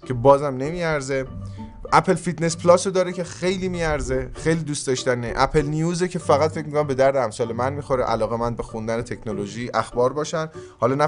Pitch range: 120-160 Hz